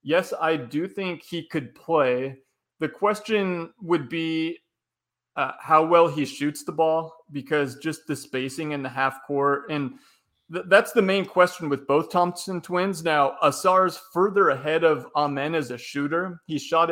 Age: 30-49